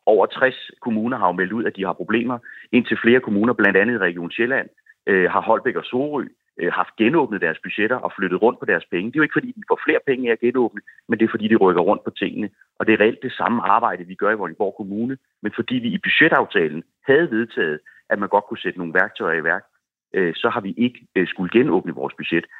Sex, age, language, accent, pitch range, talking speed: male, 30-49, Danish, native, 100-130 Hz, 245 wpm